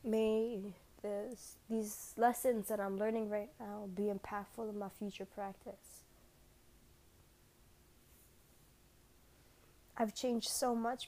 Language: English